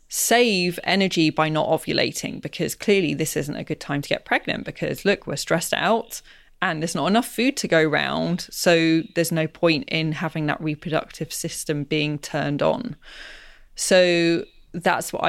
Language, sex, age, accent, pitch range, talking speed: English, female, 20-39, British, 155-180 Hz, 170 wpm